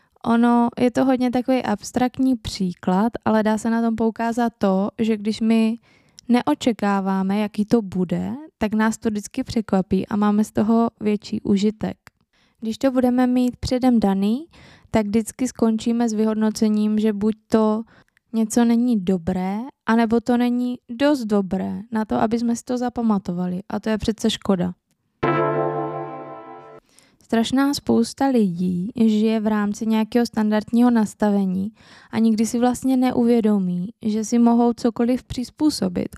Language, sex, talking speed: Czech, female, 140 wpm